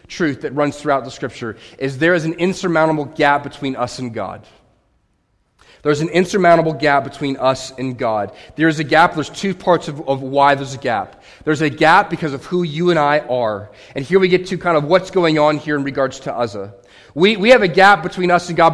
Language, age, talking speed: English, 30-49, 225 wpm